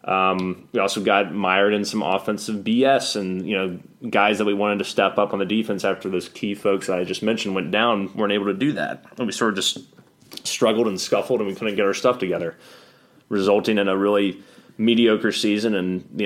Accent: American